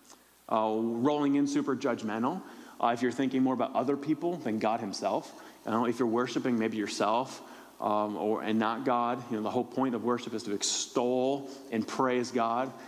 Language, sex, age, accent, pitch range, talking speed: English, male, 30-49, American, 115-150 Hz, 190 wpm